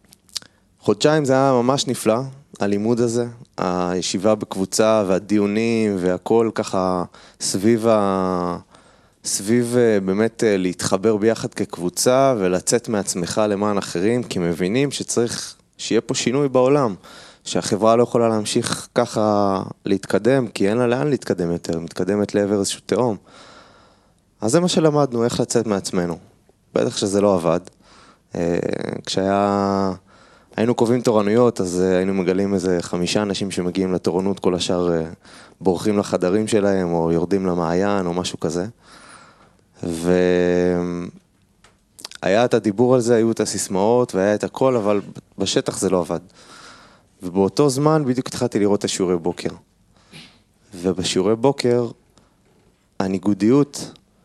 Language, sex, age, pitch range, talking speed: Hebrew, male, 20-39, 90-120 Hz, 120 wpm